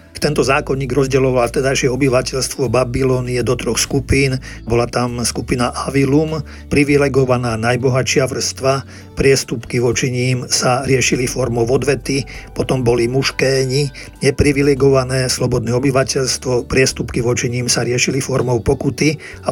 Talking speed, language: 115 wpm, Slovak